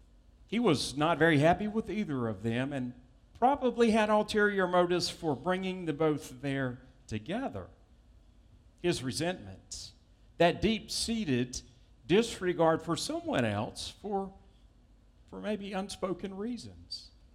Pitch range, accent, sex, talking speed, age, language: 110-170 Hz, American, male, 115 wpm, 50-69, English